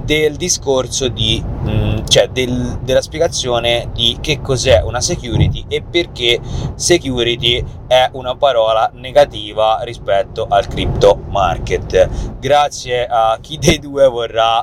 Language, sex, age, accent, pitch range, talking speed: Italian, male, 30-49, native, 110-155 Hz, 125 wpm